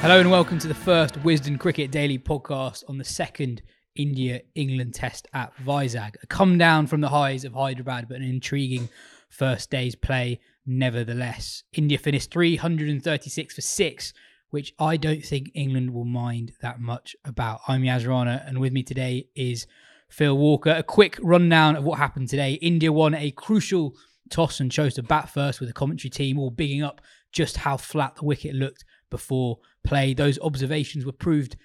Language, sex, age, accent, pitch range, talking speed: English, male, 20-39, British, 130-155 Hz, 175 wpm